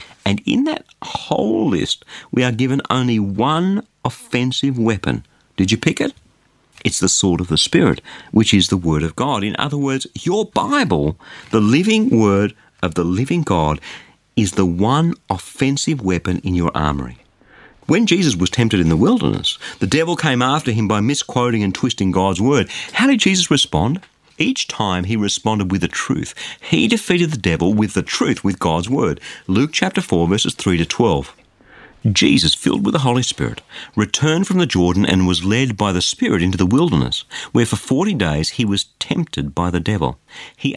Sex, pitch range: male, 90-140 Hz